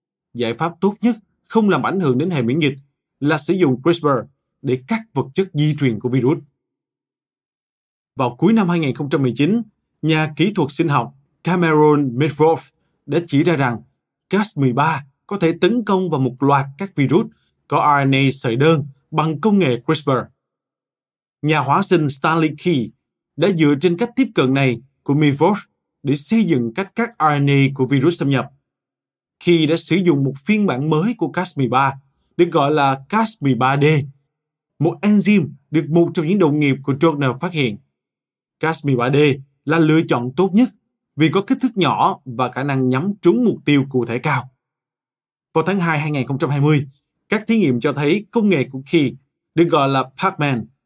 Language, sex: Vietnamese, male